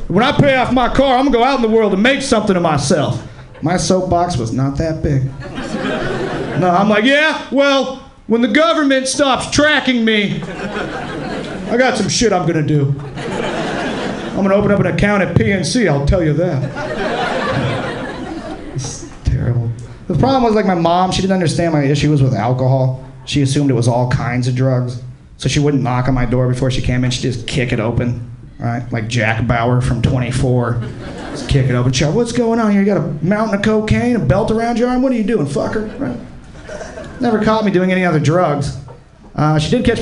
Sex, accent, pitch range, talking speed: male, American, 130-220 Hz, 205 wpm